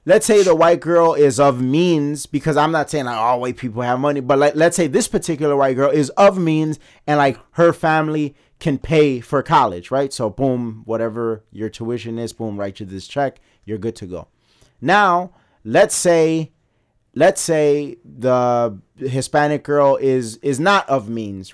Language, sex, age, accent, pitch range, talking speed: English, male, 30-49, American, 120-155 Hz, 185 wpm